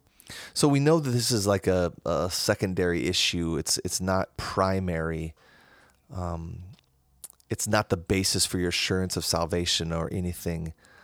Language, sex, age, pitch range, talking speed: English, male, 30-49, 90-115 Hz, 145 wpm